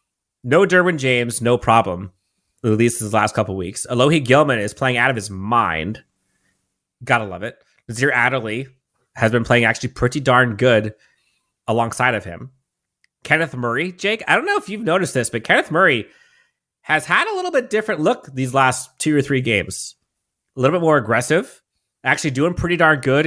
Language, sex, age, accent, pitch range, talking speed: English, male, 30-49, American, 110-160 Hz, 185 wpm